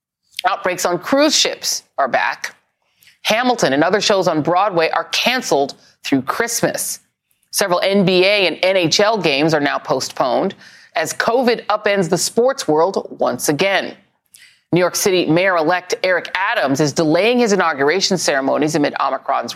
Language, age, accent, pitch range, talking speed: English, 40-59, American, 160-235 Hz, 140 wpm